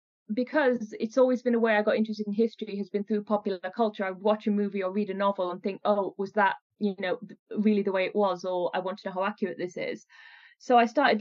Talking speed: 255 wpm